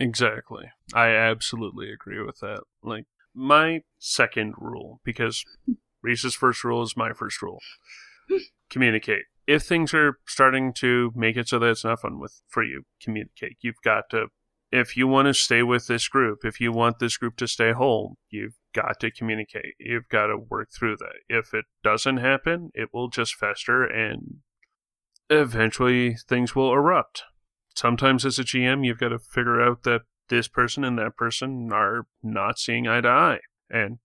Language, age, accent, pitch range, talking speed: English, 30-49, American, 115-135 Hz, 175 wpm